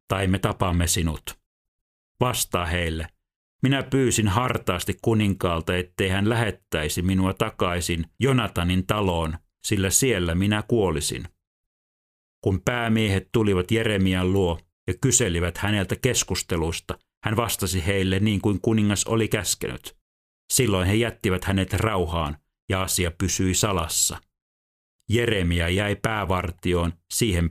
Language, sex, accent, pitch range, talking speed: Finnish, male, native, 85-105 Hz, 110 wpm